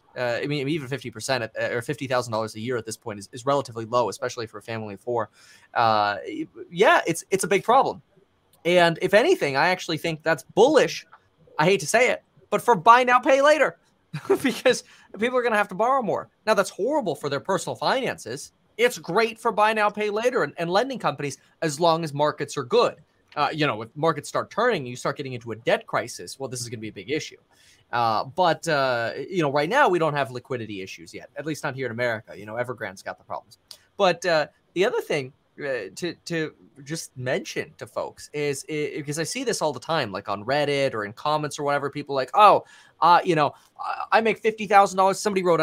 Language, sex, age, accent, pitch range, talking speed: English, male, 20-39, American, 135-195 Hz, 220 wpm